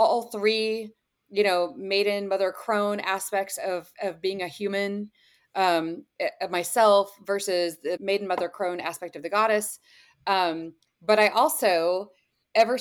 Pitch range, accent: 180-215 Hz, American